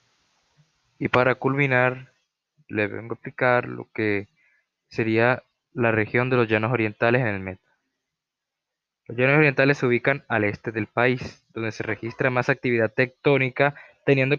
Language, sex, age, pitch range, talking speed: Spanish, male, 20-39, 115-140 Hz, 145 wpm